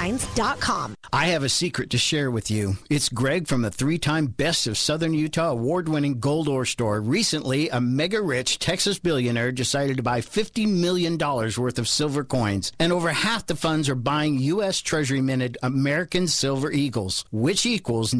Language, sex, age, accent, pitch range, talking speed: English, male, 50-69, American, 125-170 Hz, 160 wpm